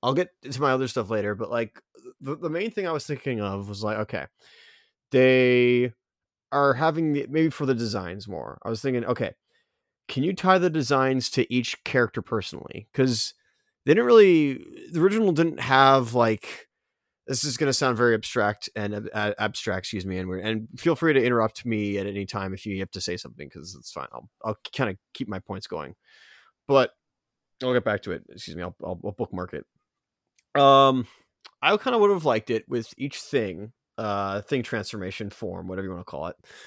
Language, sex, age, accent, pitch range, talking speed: English, male, 30-49, American, 110-140 Hz, 205 wpm